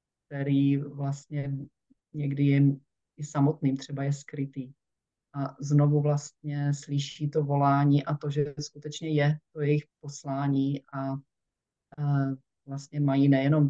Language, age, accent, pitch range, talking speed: Czech, 40-59, native, 135-150 Hz, 120 wpm